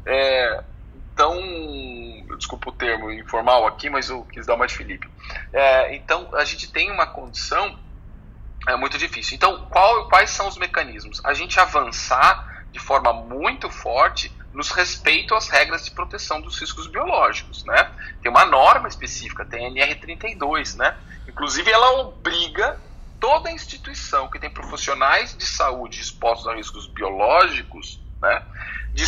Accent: Brazilian